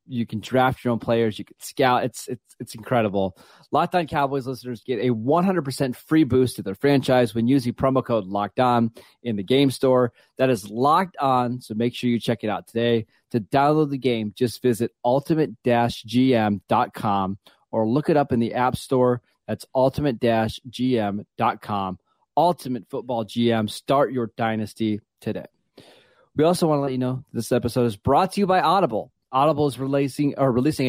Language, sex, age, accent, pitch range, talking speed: English, male, 30-49, American, 115-135 Hz, 175 wpm